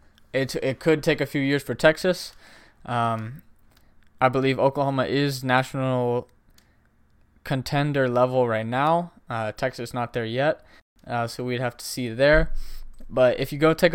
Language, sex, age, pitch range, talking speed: English, male, 20-39, 115-140 Hz, 155 wpm